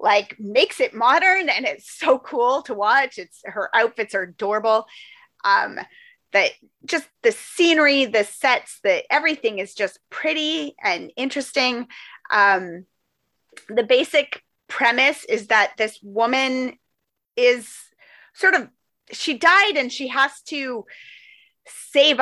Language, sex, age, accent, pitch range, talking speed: English, female, 30-49, American, 215-300 Hz, 125 wpm